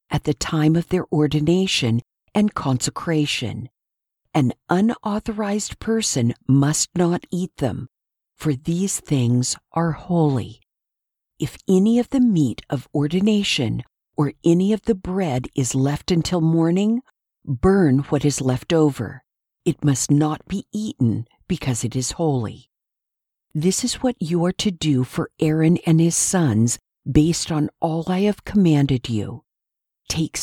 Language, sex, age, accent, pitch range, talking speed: English, female, 50-69, American, 130-180 Hz, 140 wpm